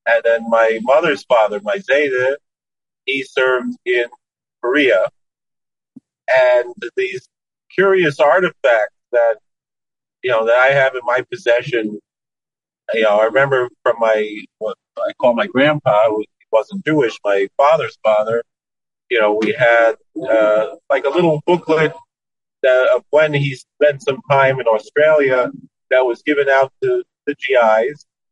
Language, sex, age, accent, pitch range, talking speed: English, male, 40-59, American, 120-160 Hz, 130 wpm